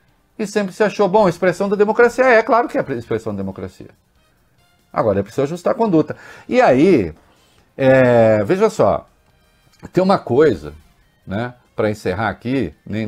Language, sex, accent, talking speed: English, male, Brazilian, 170 wpm